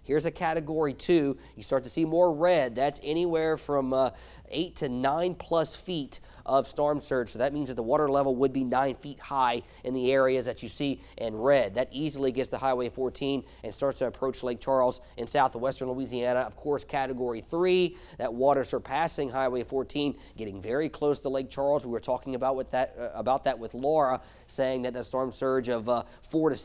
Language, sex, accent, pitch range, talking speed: English, male, American, 120-140 Hz, 205 wpm